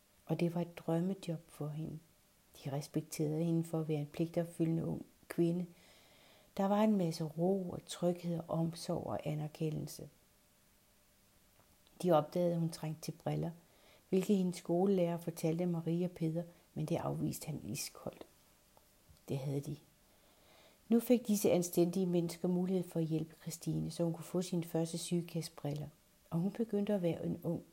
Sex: female